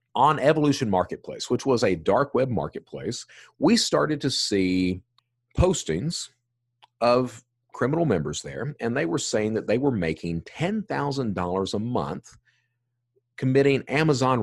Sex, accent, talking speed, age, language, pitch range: male, American, 130 wpm, 40-59, English, 100-145 Hz